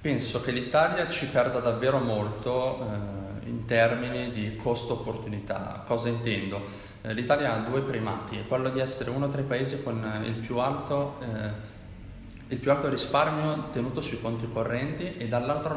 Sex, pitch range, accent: male, 105-130 Hz, native